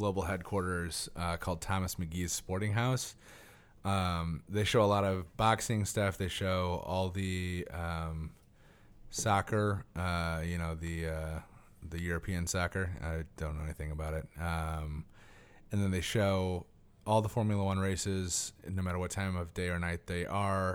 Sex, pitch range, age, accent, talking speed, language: male, 85-105 Hz, 30-49, American, 160 wpm, English